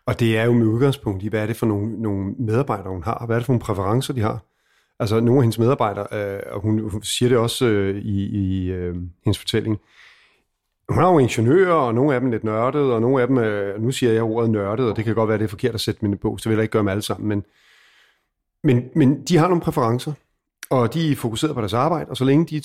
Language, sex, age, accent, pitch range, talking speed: Danish, male, 40-59, native, 110-130 Hz, 260 wpm